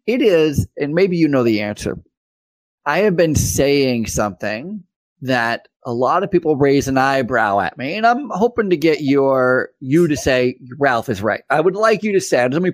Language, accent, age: English, American, 30-49